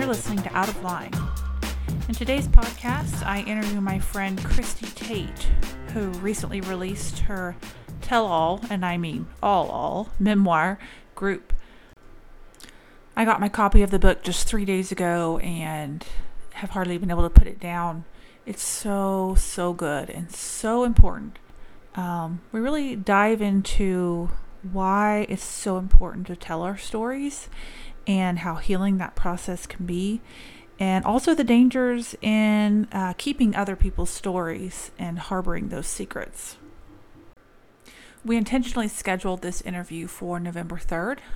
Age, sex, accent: 30-49, female, American